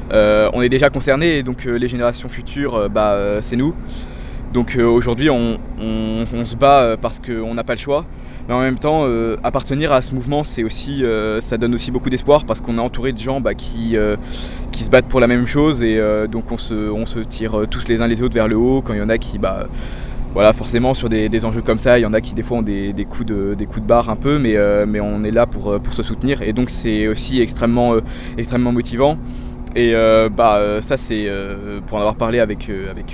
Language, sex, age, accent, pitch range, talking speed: French, male, 20-39, French, 110-125 Hz, 265 wpm